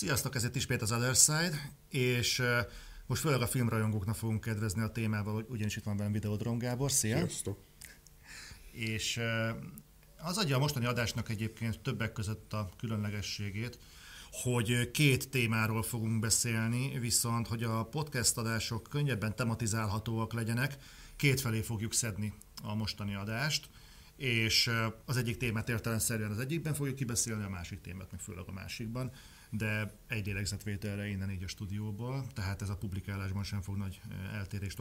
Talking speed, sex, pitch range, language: 145 wpm, male, 105-125 Hz, Hungarian